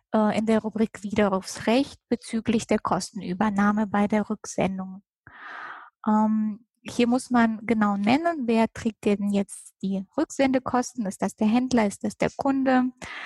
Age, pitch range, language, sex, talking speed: 20-39, 205-240 Hz, German, female, 135 wpm